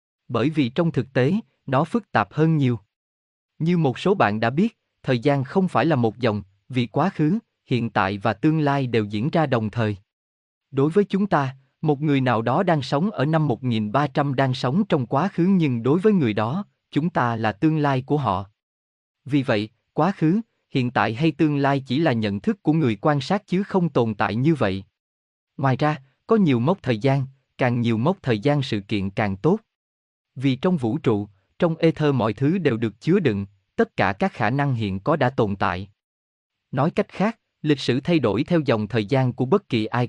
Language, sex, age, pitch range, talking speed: Vietnamese, male, 20-39, 110-155 Hz, 215 wpm